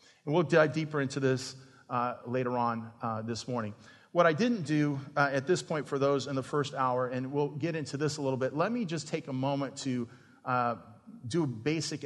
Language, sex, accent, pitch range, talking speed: English, male, American, 125-145 Hz, 225 wpm